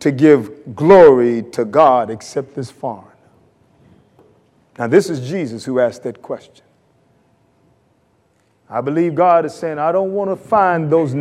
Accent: American